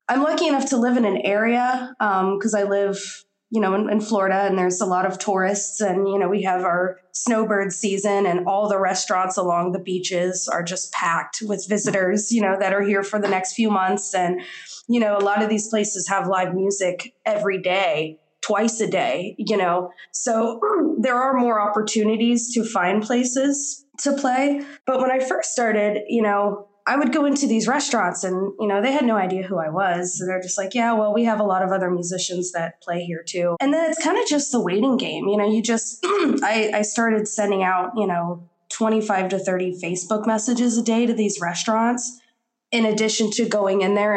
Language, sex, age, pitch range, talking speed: English, female, 20-39, 185-225 Hz, 215 wpm